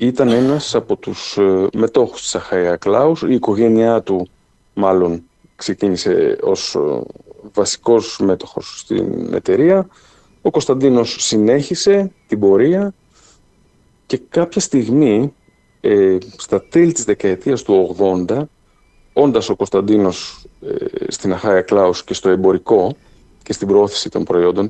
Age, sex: 50-69, male